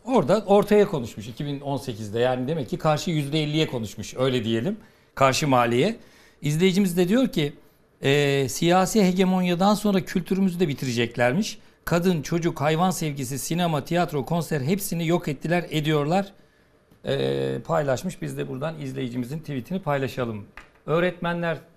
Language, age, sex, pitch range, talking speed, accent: Turkish, 60-79, male, 135-180 Hz, 125 wpm, native